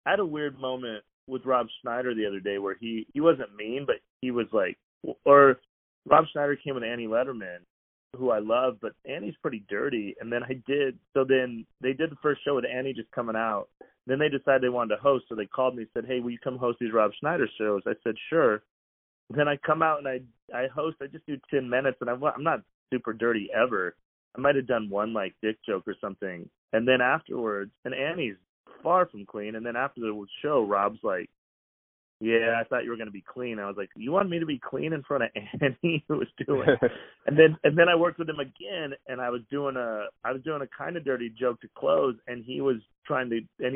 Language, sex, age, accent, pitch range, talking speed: English, male, 30-49, American, 115-145 Hz, 240 wpm